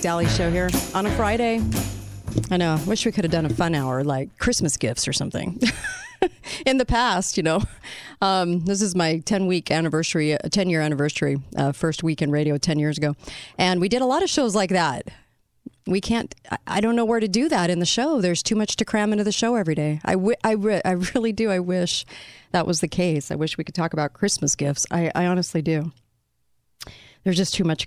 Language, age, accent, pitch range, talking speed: English, 40-59, American, 150-190 Hz, 230 wpm